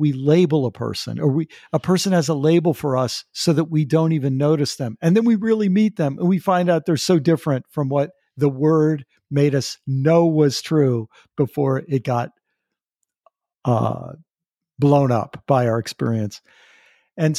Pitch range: 130-160 Hz